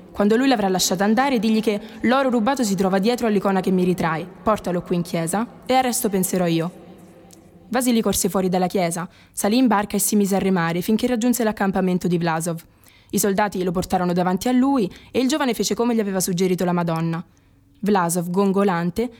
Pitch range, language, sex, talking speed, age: 180-225 Hz, Italian, female, 195 wpm, 20-39